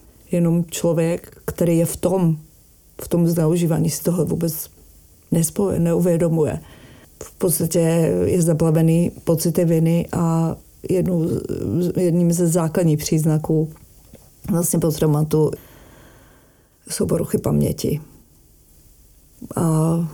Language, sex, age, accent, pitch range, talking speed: Czech, female, 40-59, native, 155-170 Hz, 95 wpm